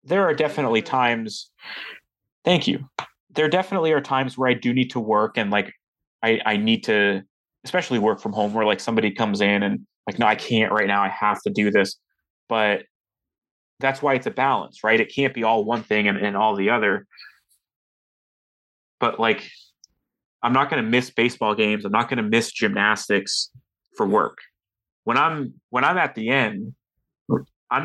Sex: male